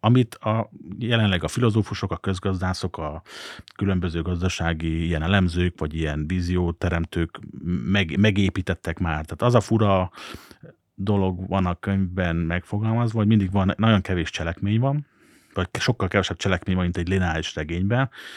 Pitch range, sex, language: 85-105 Hz, male, Hungarian